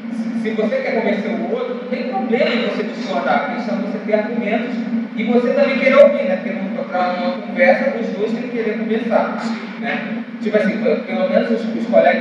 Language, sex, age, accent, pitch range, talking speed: Portuguese, male, 20-39, Brazilian, 220-245 Hz, 190 wpm